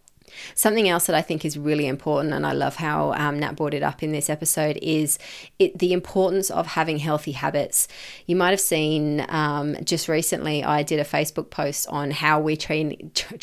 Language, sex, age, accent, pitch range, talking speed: English, female, 30-49, Australian, 155-200 Hz, 200 wpm